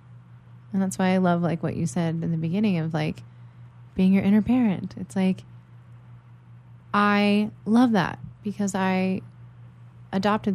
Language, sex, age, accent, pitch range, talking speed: English, female, 20-39, American, 125-185 Hz, 150 wpm